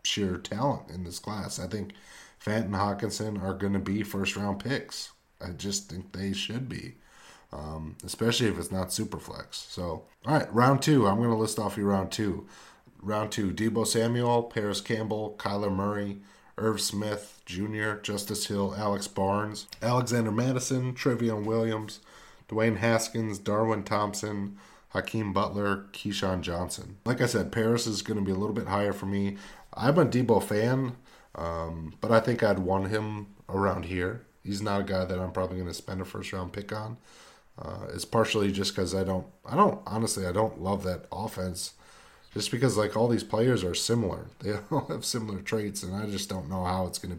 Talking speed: 185 wpm